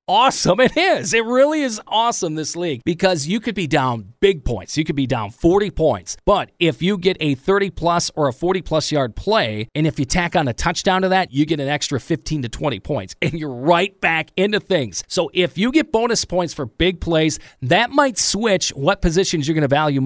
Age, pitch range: 40-59, 140-195 Hz